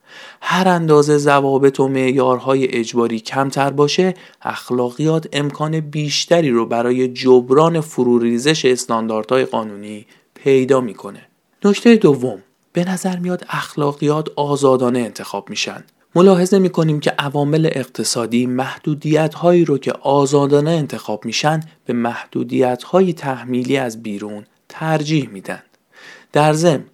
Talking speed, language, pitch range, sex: 110 wpm, Persian, 120-155 Hz, male